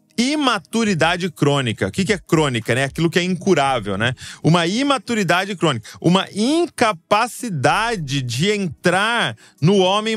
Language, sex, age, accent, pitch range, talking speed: Portuguese, male, 30-49, Brazilian, 135-195 Hz, 125 wpm